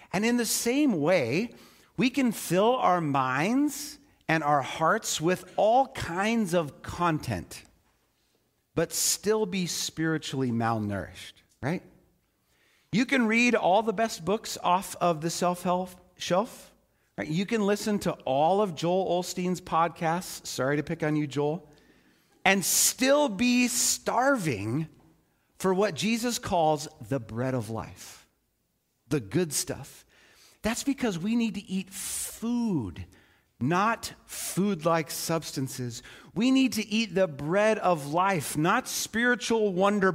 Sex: male